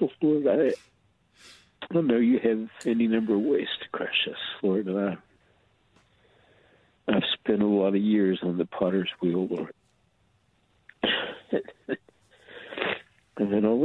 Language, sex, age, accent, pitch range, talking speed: English, male, 60-79, American, 95-110 Hz, 120 wpm